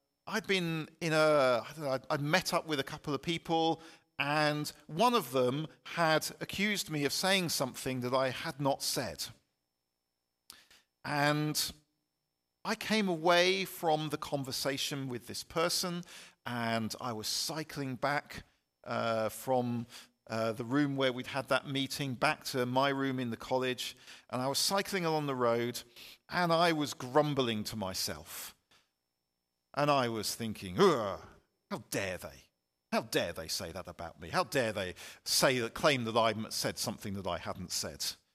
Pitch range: 90-150 Hz